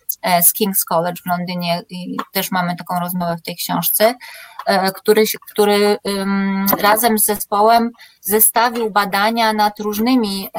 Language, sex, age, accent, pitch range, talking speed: Polish, female, 20-39, native, 185-215 Hz, 130 wpm